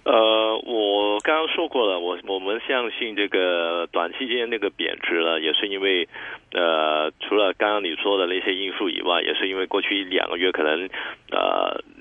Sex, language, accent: male, Chinese, native